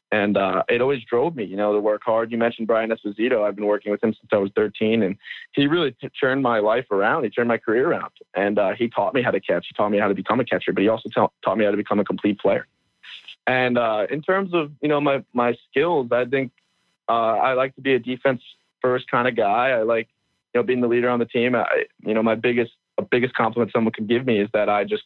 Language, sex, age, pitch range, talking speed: English, male, 20-39, 105-125 Hz, 270 wpm